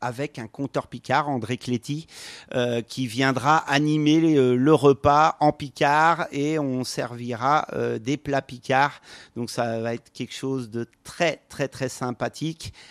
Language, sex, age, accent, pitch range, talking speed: French, male, 40-59, French, 120-145 Hz, 160 wpm